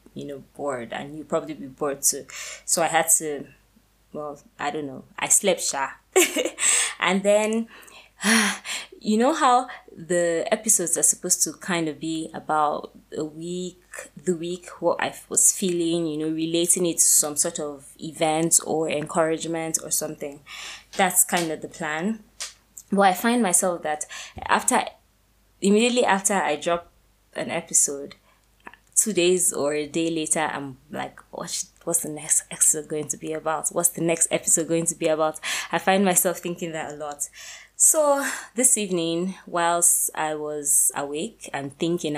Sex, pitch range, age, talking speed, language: female, 150-185 Hz, 20-39, 165 wpm, English